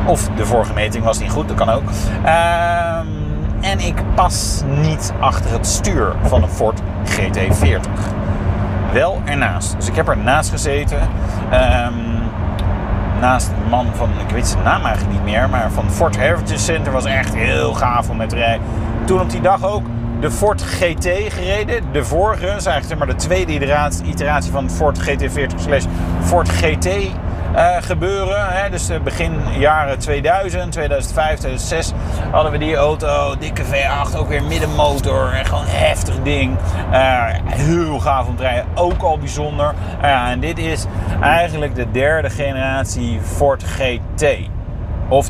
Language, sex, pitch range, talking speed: Dutch, male, 85-105 Hz, 160 wpm